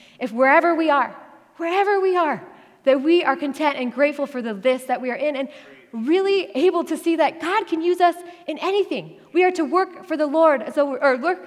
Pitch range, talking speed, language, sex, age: 220-295 Hz, 225 wpm, English, female, 20-39